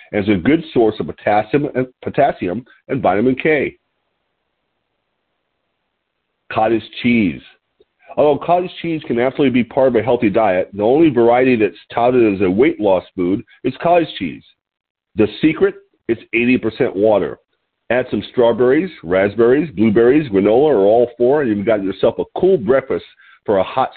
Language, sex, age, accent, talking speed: English, male, 50-69, American, 155 wpm